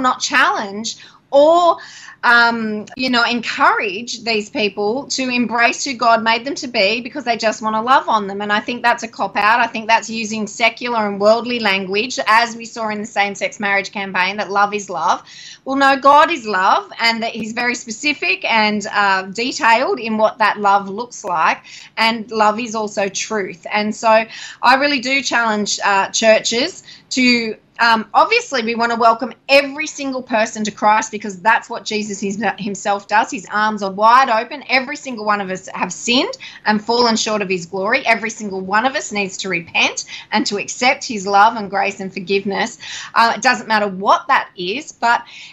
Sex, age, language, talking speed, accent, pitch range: female, 20-39, English, 190 wpm, Australian, 210-255 Hz